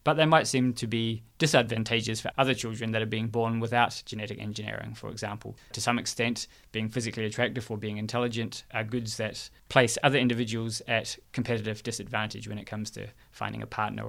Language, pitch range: English, 110-130 Hz